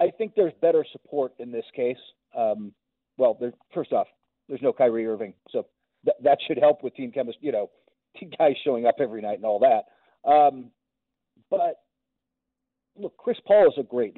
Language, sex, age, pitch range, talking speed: English, male, 40-59, 135-205 Hz, 185 wpm